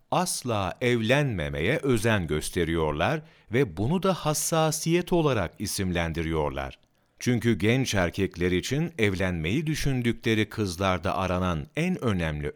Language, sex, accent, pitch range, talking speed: Turkish, male, native, 90-135 Hz, 95 wpm